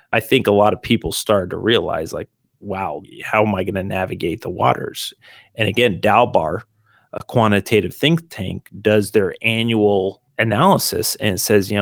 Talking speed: 170 wpm